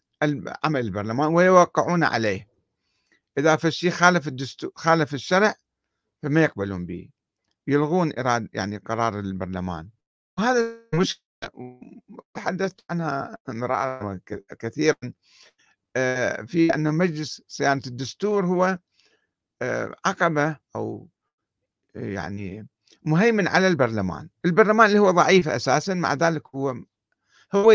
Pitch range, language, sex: 110-175 Hz, Arabic, male